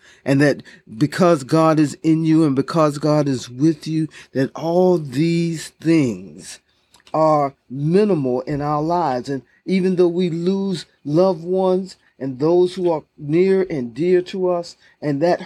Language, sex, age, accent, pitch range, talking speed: English, male, 40-59, American, 130-160 Hz, 155 wpm